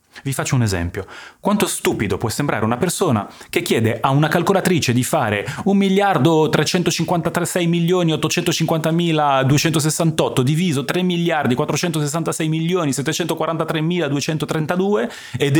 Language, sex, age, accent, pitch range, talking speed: Italian, male, 30-49, native, 100-165 Hz, 100 wpm